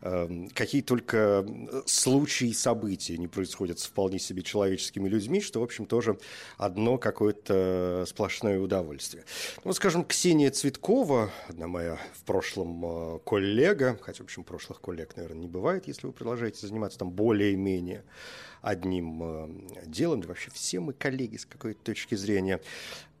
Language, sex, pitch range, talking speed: Russian, male, 95-140 Hz, 135 wpm